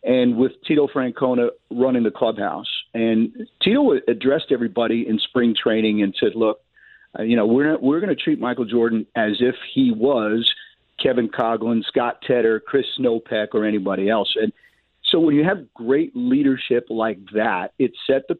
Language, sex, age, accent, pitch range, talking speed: English, male, 50-69, American, 110-145 Hz, 165 wpm